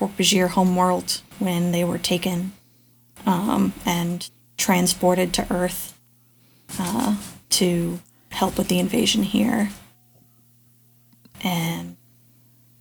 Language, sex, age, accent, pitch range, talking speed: English, female, 20-39, American, 175-205 Hz, 90 wpm